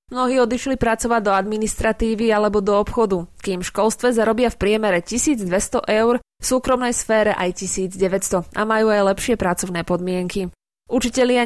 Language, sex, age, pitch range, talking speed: Slovak, female, 20-39, 190-240 Hz, 140 wpm